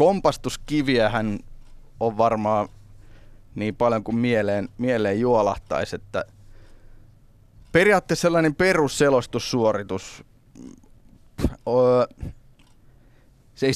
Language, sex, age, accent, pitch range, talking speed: Finnish, male, 20-39, native, 110-130 Hz, 70 wpm